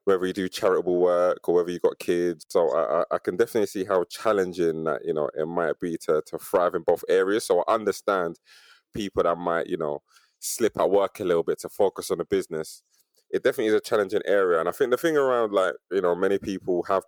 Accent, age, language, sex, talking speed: British, 20-39, English, male, 235 wpm